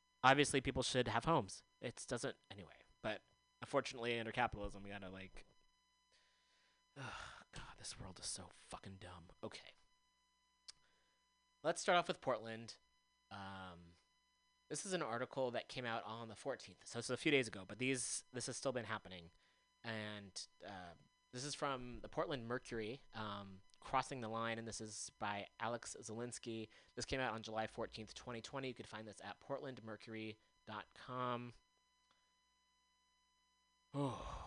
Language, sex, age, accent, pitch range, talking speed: English, male, 20-39, American, 105-135 Hz, 150 wpm